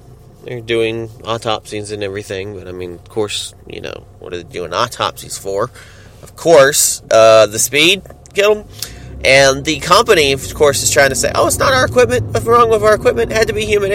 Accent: American